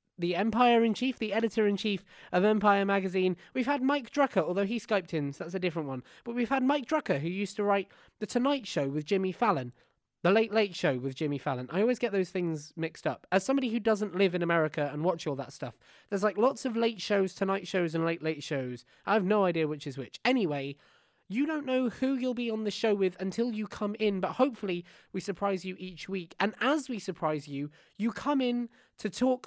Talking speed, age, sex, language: 230 wpm, 20-39, male, English